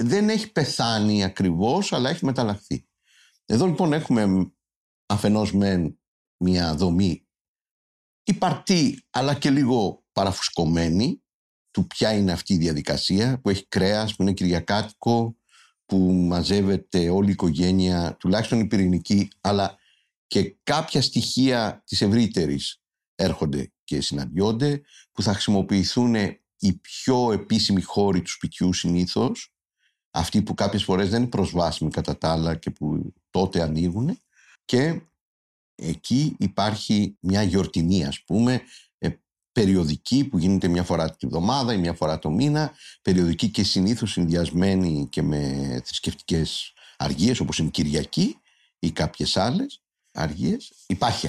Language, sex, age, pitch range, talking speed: Greek, male, 50-69, 85-115 Hz, 125 wpm